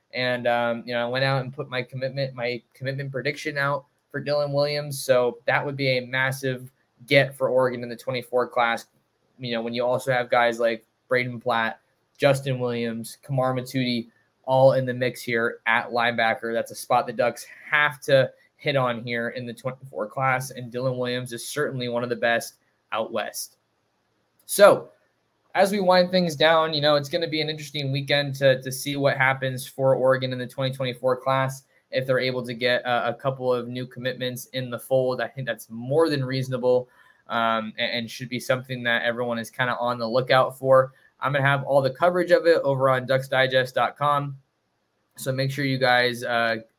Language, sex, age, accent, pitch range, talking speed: English, male, 20-39, American, 120-140 Hz, 200 wpm